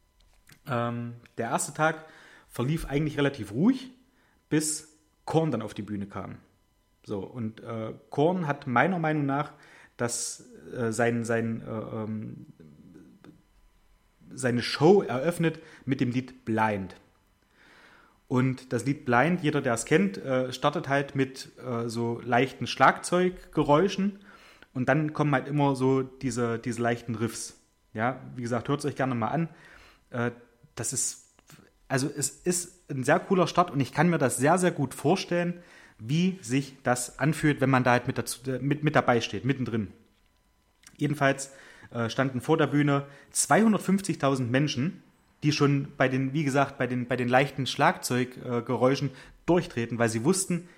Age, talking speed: 30-49, 150 wpm